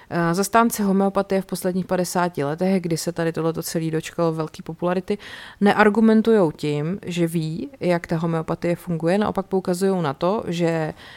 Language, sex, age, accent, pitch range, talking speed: Czech, female, 30-49, native, 165-195 Hz, 145 wpm